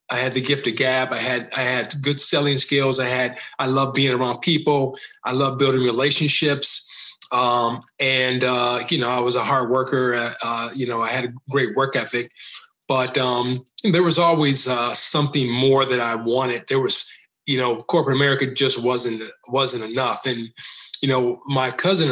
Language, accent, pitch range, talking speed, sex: English, American, 125-140 Hz, 190 wpm, male